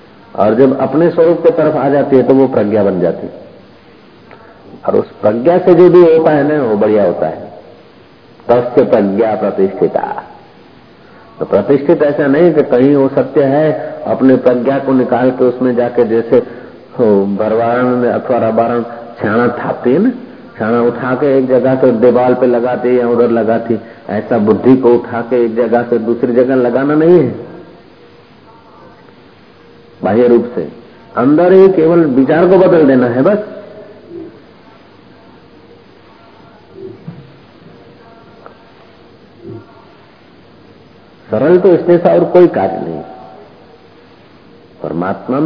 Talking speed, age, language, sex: 130 wpm, 50-69, Hindi, male